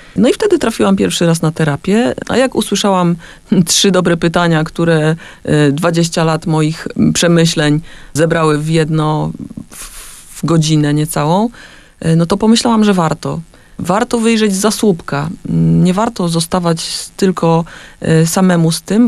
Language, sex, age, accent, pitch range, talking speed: Polish, female, 30-49, native, 160-195 Hz, 130 wpm